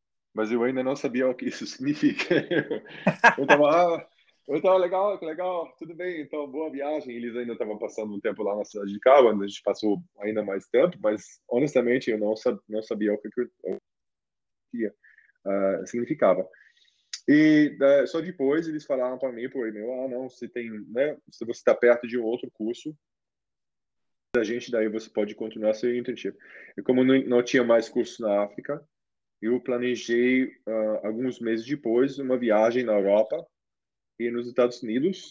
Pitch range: 110-145 Hz